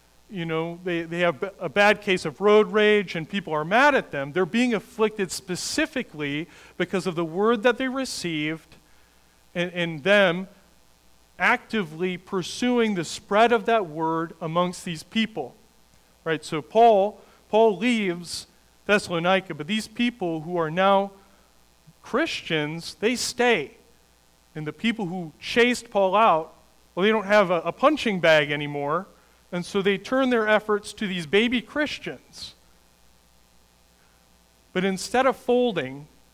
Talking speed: 140 wpm